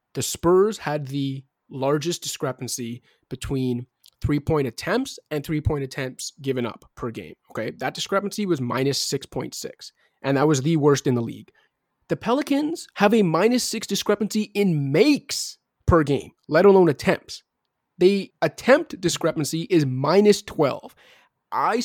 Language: English